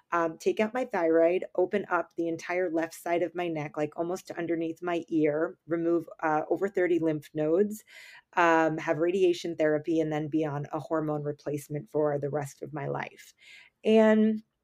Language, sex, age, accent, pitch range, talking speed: English, female, 30-49, American, 155-185 Hz, 175 wpm